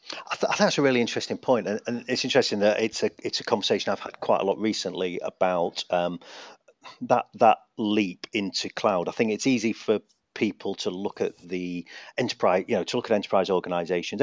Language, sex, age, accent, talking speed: English, male, 40-59, British, 210 wpm